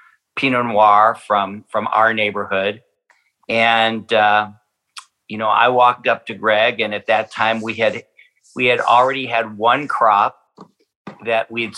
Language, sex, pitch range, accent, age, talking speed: English, male, 110-130 Hz, American, 50-69, 150 wpm